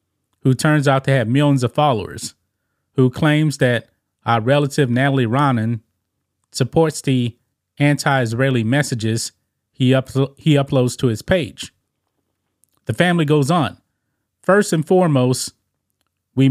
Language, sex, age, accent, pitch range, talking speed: English, male, 30-49, American, 120-150 Hz, 120 wpm